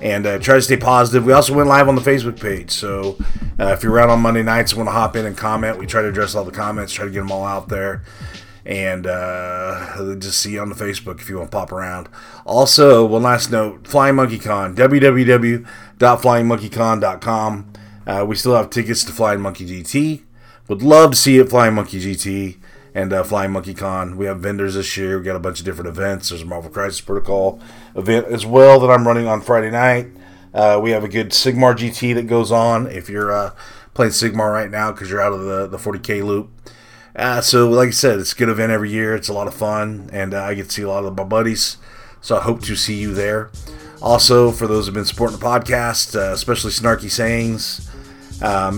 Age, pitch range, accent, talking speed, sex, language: 30-49, 100-115 Hz, American, 230 wpm, male, English